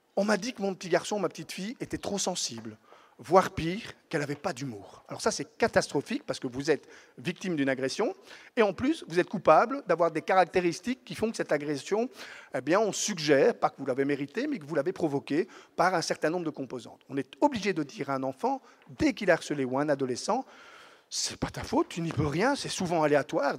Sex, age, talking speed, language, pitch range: male, 50-69, 235 wpm, French, 145-225 Hz